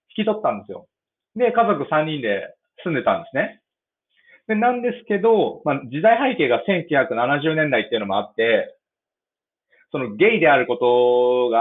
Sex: male